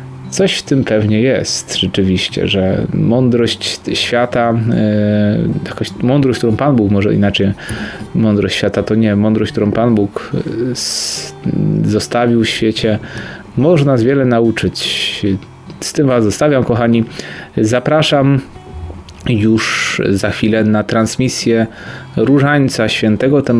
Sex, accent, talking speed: male, native, 115 wpm